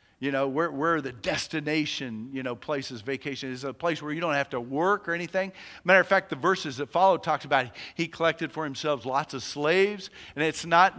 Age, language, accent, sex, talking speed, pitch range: 50-69, English, American, male, 220 wpm, 145-185 Hz